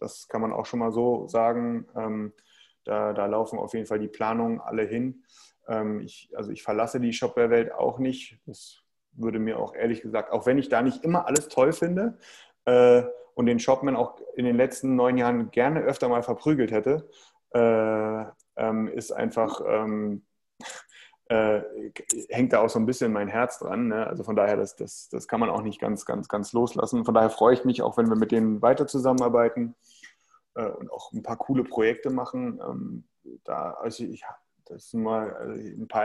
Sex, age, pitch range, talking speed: male, 30-49, 110-130 Hz, 185 wpm